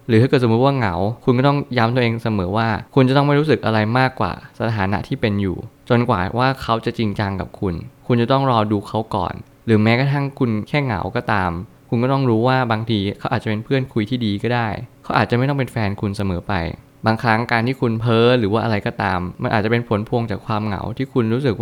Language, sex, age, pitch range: Thai, male, 20-39, 105-125 Hz